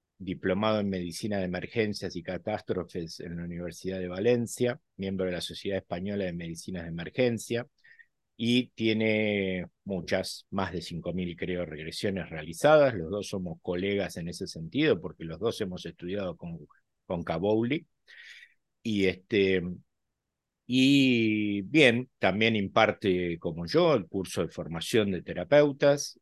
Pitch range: 90-115 Hz